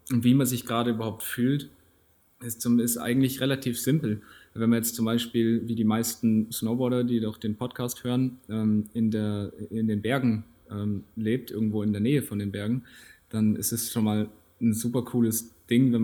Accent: German